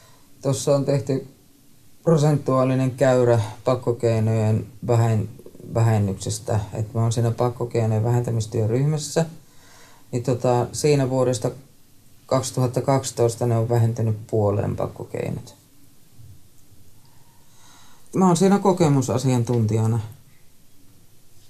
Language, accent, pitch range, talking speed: Finnish, native, 115-140 Hz, 75 wpm